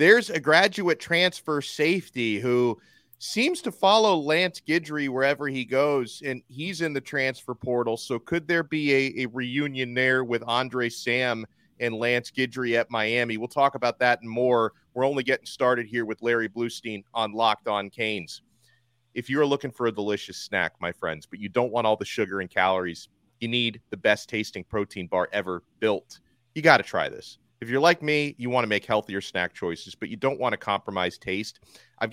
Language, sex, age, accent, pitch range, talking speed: English, male, 30-49, American, 115-155 Hz, 195 wpm